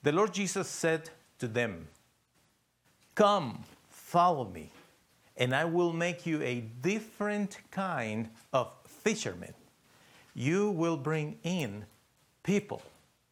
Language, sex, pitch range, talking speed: English, male, 115-165 Hz, 110 wpm